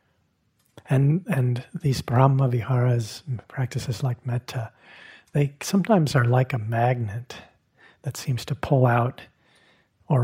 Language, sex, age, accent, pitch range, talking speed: English, male, 40-59, American, 120-145 Hz, 110 wpm